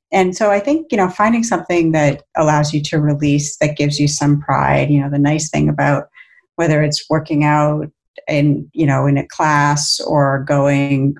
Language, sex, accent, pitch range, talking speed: English, female, American, 145-155 Hz, 195 wpm